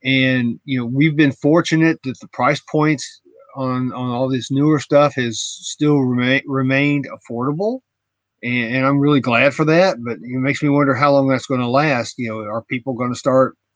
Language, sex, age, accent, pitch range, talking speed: English, male, 40-59, American, 120-150 Hz, 200 wpm